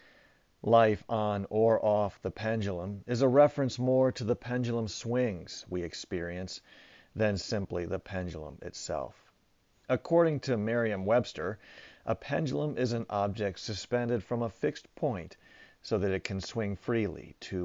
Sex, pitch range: male, 95-125 Hz